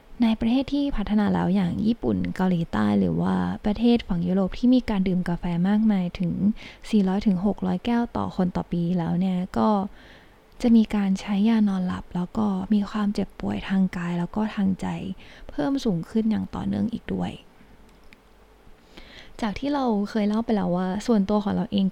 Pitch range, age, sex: 180-225 Hz, 20-39, female